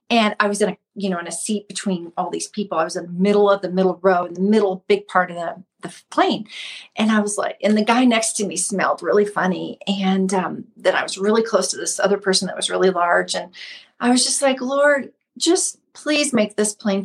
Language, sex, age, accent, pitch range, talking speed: English, female, 40-59, American, 190-245 Hz, 255 wpm